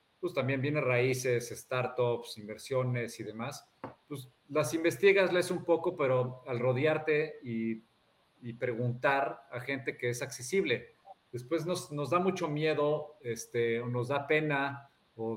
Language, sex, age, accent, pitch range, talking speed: Spanish, male, 50-69, Mexican, 120-150 Hz, 145 wpm